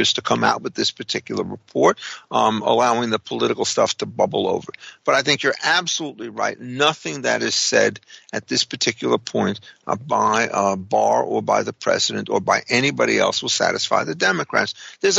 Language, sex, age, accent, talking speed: English, male, 50-69, American, 180 wpm